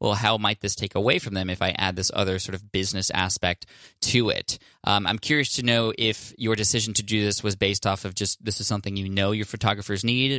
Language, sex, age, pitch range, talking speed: English, male, 20-39, 100-115 Hz, 250 wpm